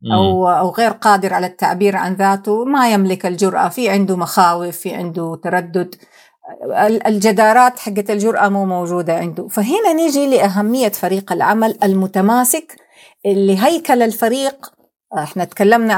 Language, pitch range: Arabic, 185-245 Hz